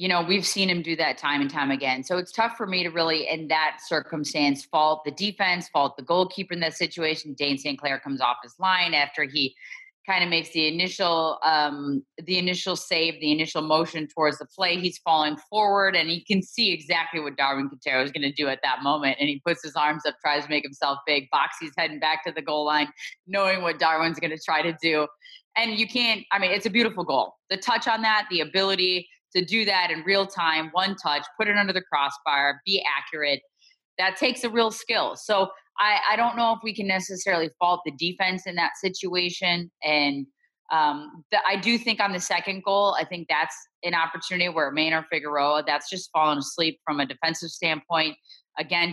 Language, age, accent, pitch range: English, 20-39, American, 150-190 Hz